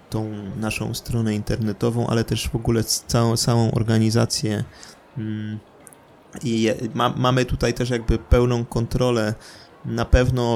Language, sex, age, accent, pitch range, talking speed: Polish, male, 20-39, native, 115-125 Hz, 125 wpm